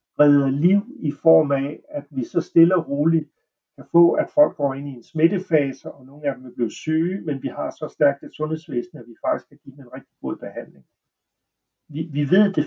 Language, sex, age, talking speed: Danish, male, 60-79, 225 wpm